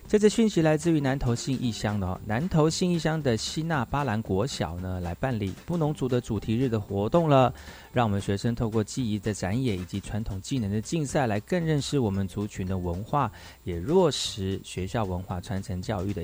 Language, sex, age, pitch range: Chinese, male, 30-49, 100-135 Hz